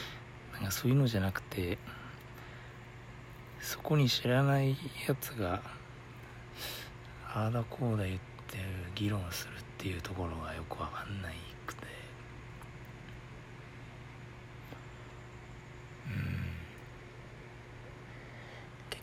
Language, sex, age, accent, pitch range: Japanese, male, 60-79, native, 105-125 Hz